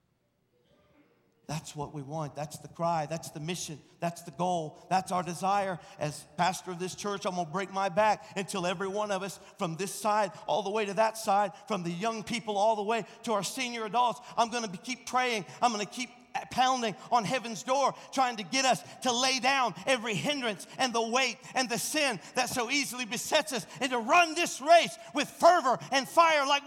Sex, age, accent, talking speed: male, 50-69, American, 205 wpm